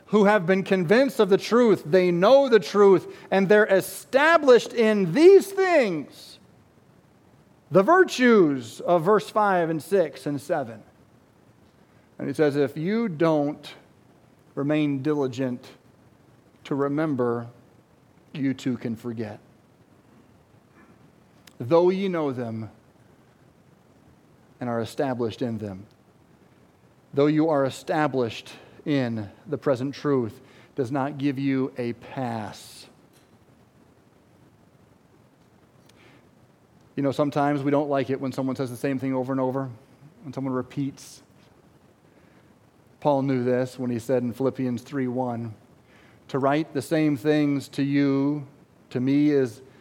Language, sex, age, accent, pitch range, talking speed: English, male, 40-59, American, 130-155 Hz, 120 wpm